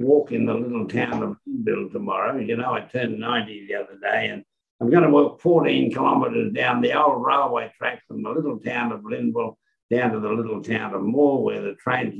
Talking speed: 215 wpm